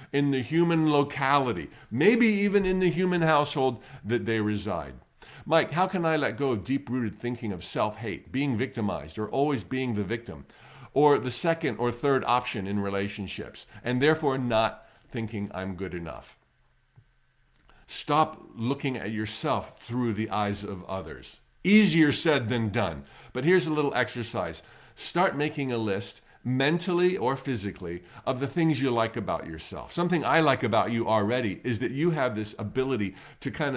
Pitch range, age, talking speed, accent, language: 110-155 Hz, 50-69, 165 wpm, American, English